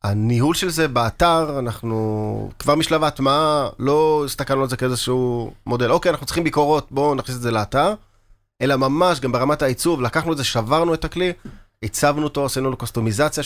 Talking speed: 175 wpm